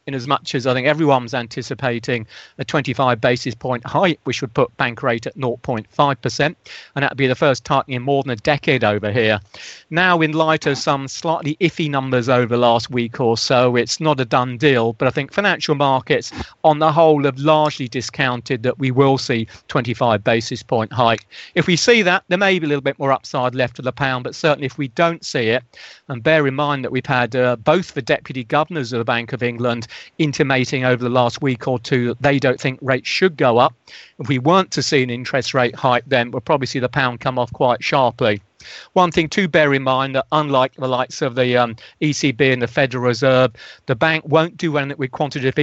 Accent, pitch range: British, 125-150 Hz